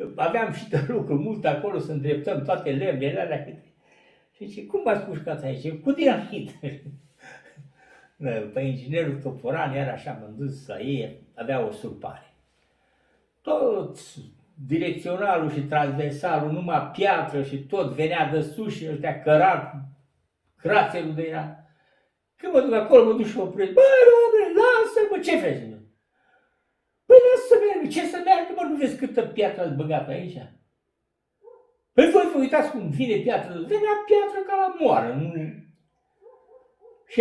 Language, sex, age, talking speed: Romanian, male, 60-79, 140 wpm